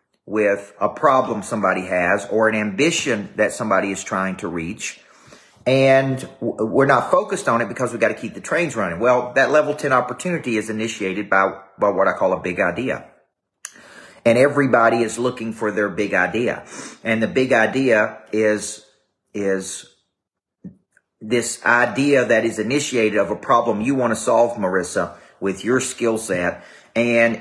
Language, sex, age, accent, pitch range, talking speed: English, male, 40-59, American, 105-125 Hz, 165 wpm